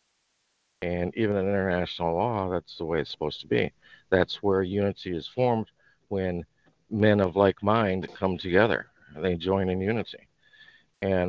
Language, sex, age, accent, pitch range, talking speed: English, male, 50-69, American, 90-105 Hz, 155 wpm